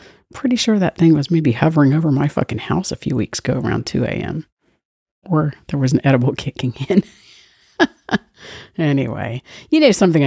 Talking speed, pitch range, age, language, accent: 170 wpm, 140-205 Hz, 50-69, English, American